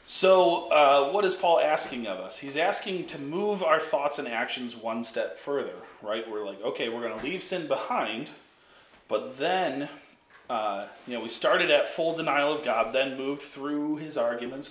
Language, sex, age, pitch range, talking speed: English, male, 30-49, 120-155 Hz, 190 wpm